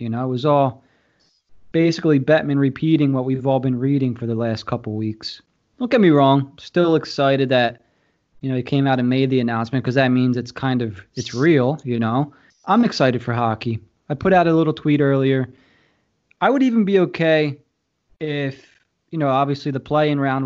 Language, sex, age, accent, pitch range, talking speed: English, male, 20-39, American, 130-180 Hz, 200 wpm